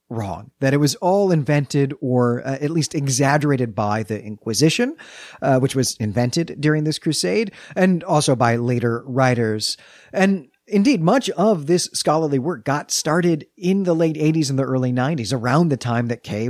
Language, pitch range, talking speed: English, 115-160 Hz, 175 wpm